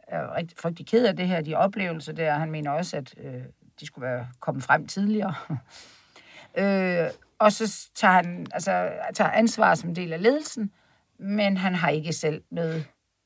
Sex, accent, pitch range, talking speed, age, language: female, native, 155-210 Hz, 175 wpm, 60-79, Danish